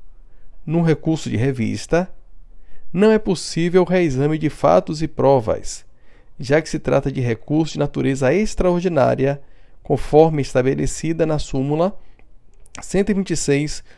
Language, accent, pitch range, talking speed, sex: Portuguese, Brazilian, 130-170 Hz, 115 wpm, male